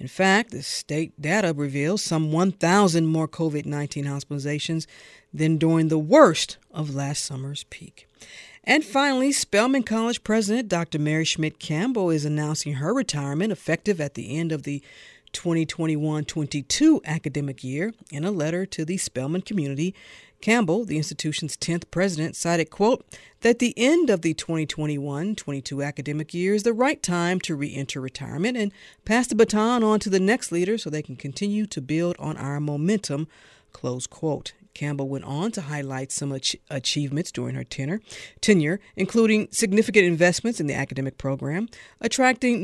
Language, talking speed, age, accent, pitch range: English, 155 wpm, 50-69, American, 150-210 Hz